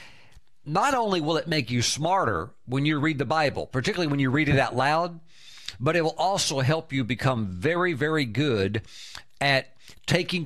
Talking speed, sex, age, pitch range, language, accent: 180 wpm, male, 50-69, 130-170 Hz, English, American